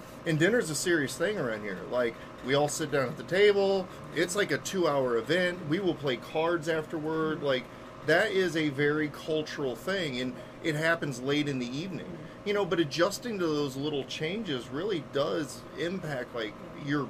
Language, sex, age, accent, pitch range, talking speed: English, male, 30-49, American, 130-170 Hz, 185 wpm